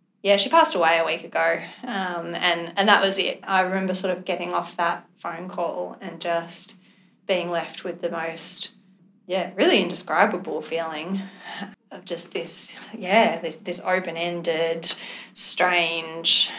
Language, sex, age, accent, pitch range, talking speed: English, female, 20-39, Australian, 170-195 Hz, 150 wpm